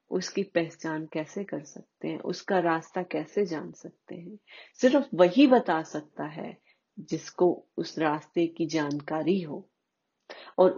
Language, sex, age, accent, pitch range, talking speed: Hindi, female, 30-49, native, 170-260 Hz, 135 wpm